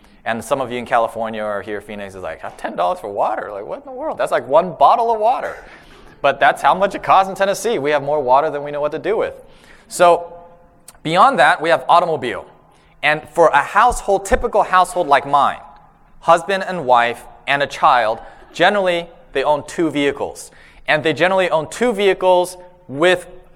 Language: English